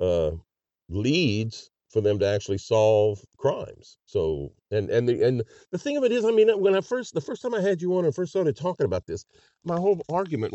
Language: English